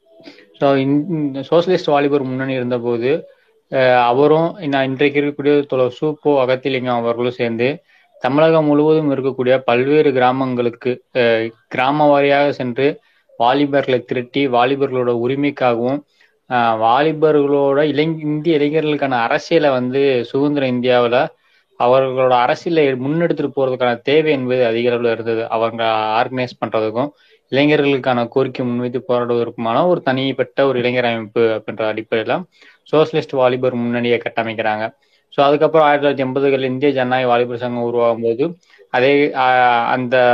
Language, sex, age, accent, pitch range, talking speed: Tamil, male, 20-39, native, 120-145 Hz, 105 wpm